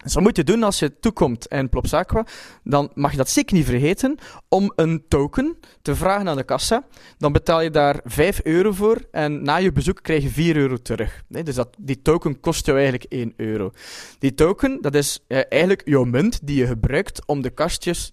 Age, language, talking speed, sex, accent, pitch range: 20-39, Dutch, 215 wpm, male, Dutch, 125-160 Hz